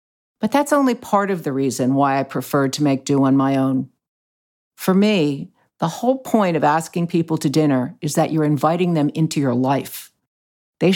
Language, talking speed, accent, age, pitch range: English, 190 wpm, American, 50-69, 145-185 Hz